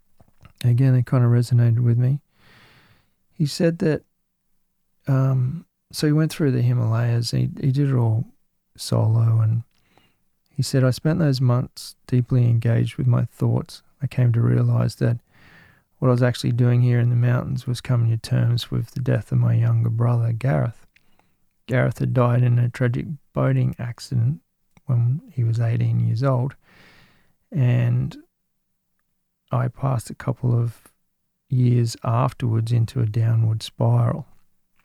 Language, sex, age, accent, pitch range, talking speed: English, male, 40-59, Australian, 115-130 Hz, 150 wpm